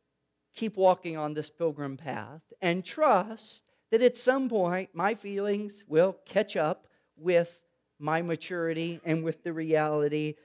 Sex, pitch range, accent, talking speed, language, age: male, 155-210 Hz, American, 140 wpm, English, 40-59